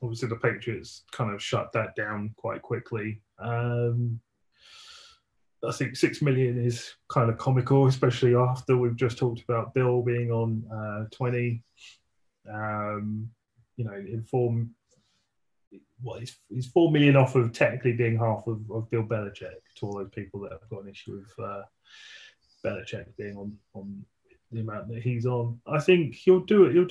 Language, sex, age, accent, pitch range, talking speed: English, male, 20-39, British, 110-130 Hz, 165 wpm